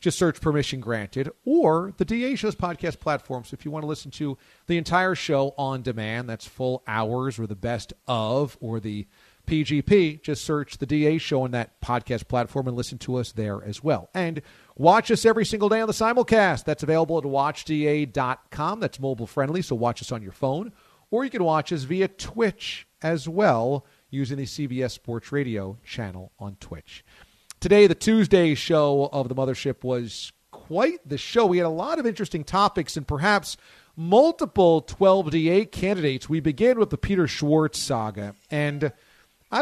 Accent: American